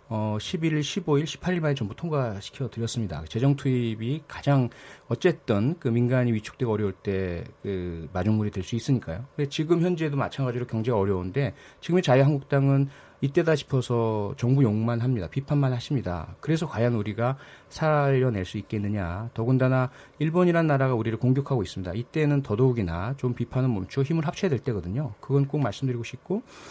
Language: Korean